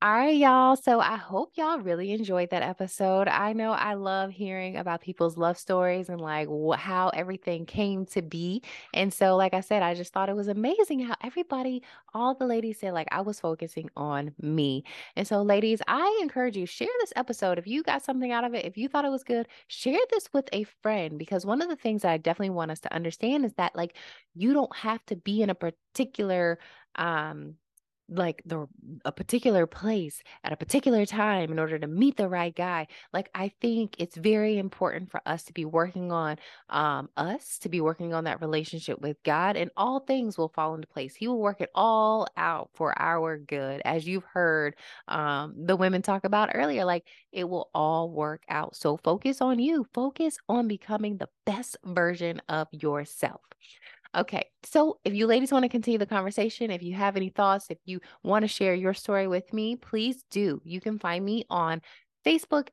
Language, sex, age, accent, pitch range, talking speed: English, female, 20-39, American, 170-225 Hz, 205 wpm